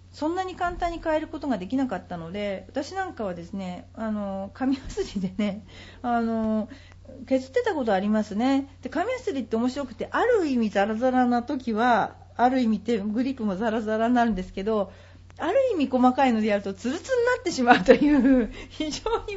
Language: Japanese